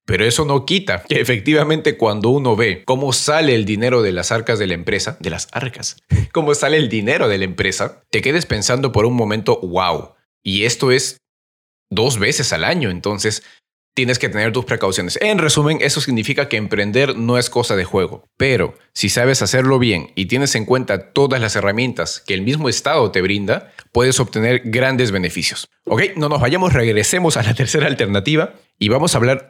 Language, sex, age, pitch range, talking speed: Spanish, male, 30-49, 105-145 Hz, 195 wpm